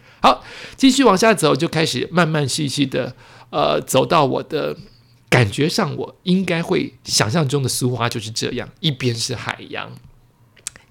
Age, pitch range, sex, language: 50-69, 125-180 Hz, male, Chinese